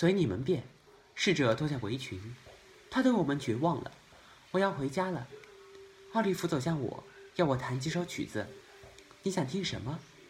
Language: Chinese